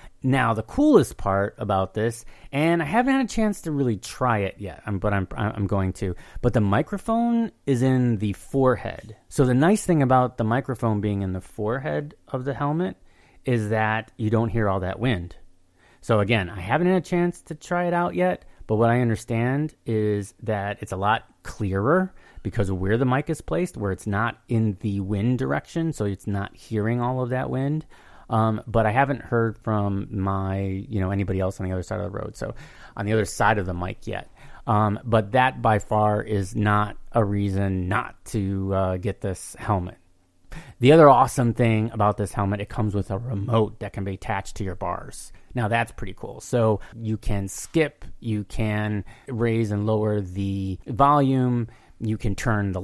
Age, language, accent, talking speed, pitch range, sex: 30-49, English, American, 200 wpm, 100-130 Hz, male